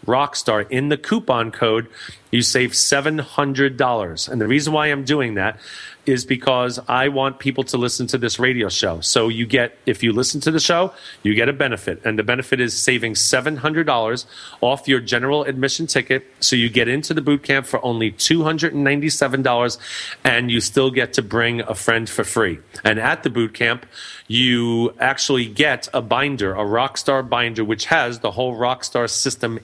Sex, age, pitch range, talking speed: male, 40-59, 115-140 Hz, 180 wpm